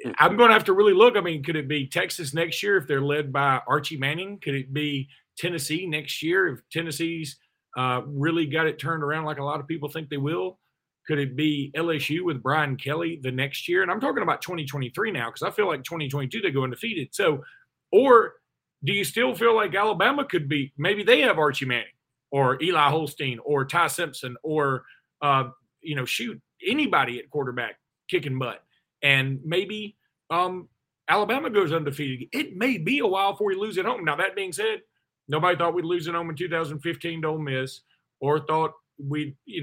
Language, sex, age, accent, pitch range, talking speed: English, male, 40-59, American, 135-170 Hz, 200 wpm